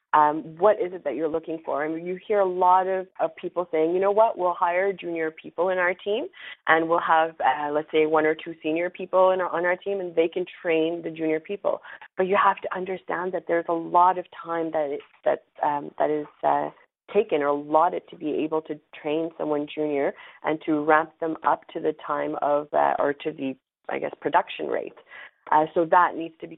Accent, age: American, 30-49